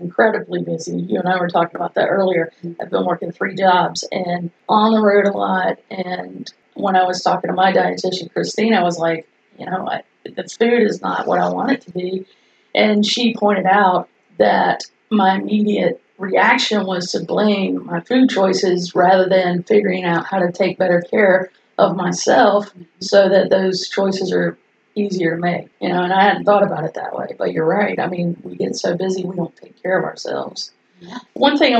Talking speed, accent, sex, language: 200 wpm, American, female, English